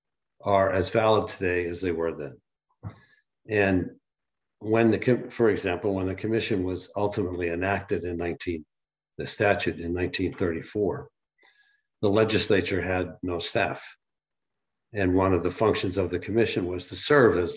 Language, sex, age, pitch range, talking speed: English, male, 50-69, 90-100 Hz, 145 wpm